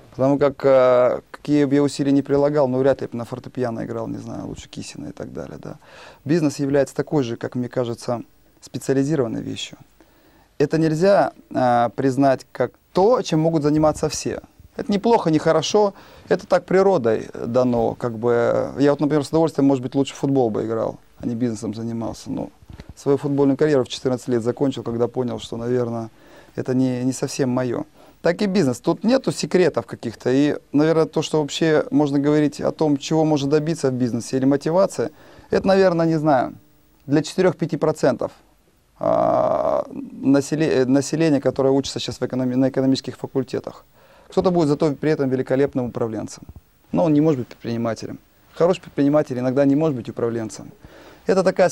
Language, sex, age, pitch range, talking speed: Russian, male, 30-49, 130-160 Hz, 165 wpm